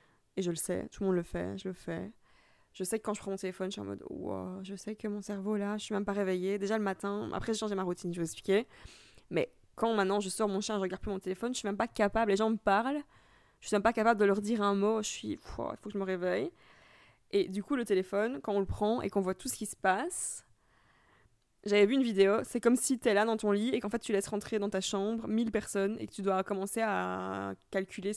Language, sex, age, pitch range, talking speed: French, female, 20-39, 185-215 Hz, 305 wpm